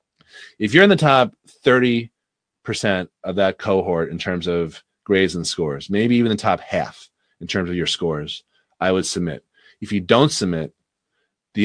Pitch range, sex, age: 85-105 Hz, male, 30-49